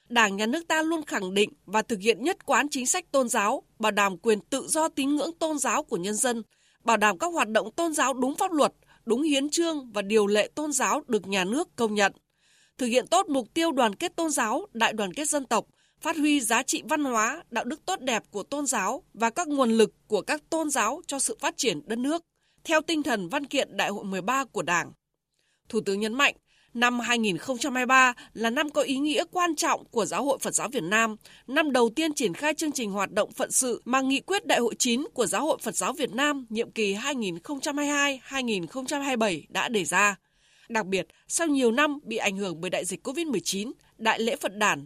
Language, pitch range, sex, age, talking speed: Vietnamese, 215-300 Hz, female, 20-39, 225 wpm